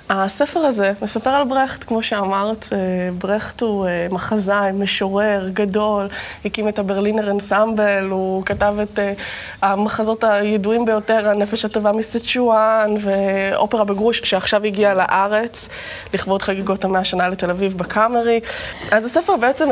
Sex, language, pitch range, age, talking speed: female, Hebrew, 195-225 Hz, 20-39, 120 wpm